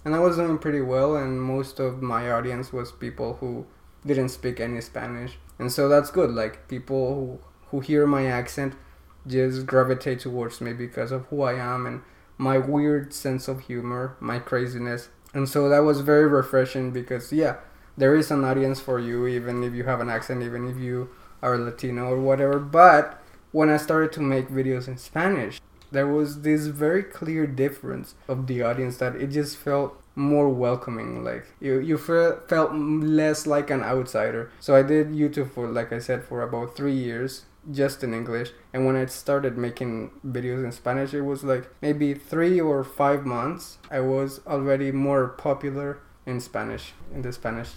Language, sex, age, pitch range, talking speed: English, male, 20-39, 125-145 Hz, 185 wpm